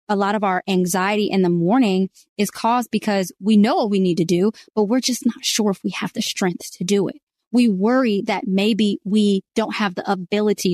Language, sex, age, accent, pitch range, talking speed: English, female, 20-39, American, 190-230 Hz, 225 wpm